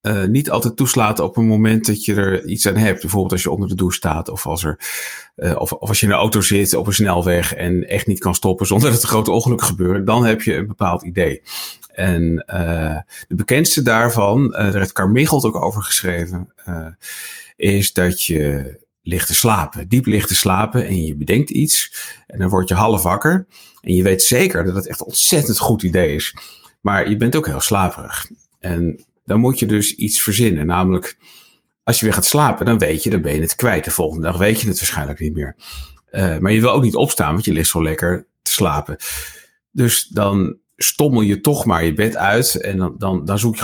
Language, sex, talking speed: Dutch, male, 225 wpm